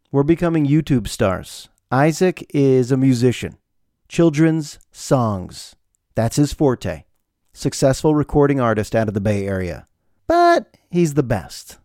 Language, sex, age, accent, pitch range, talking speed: English, male, 40-59, American, 105-140 Hz, 125 wpm